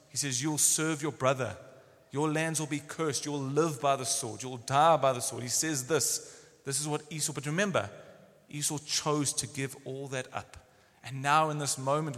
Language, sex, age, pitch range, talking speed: English, male, 30-49, 130-170 Hz, 205 wpm